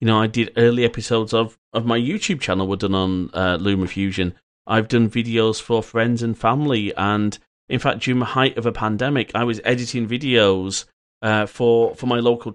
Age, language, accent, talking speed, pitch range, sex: 30-49, English, British, 195 wpm, 105-130 Hz, male